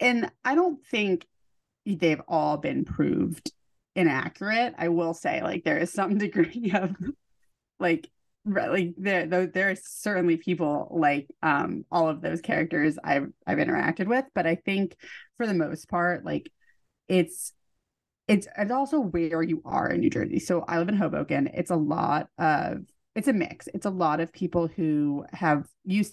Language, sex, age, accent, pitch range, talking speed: English, female, 30-49, American, 160-205 Hz, 165 wpm